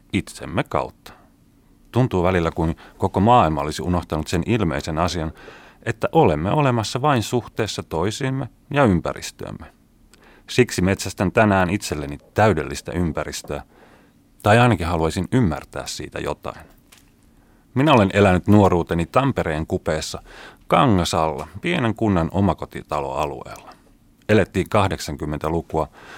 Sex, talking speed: male, 100 wpm